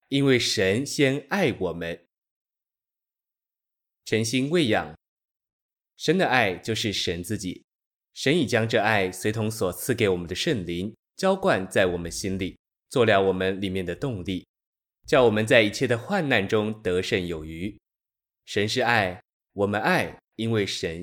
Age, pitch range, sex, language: 20-39, 95-125 Hz, male, Chinese